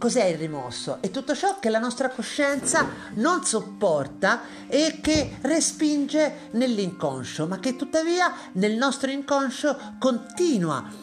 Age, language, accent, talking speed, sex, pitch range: 40-59, Italian, native, 125 wpm, male, 160-240 Hz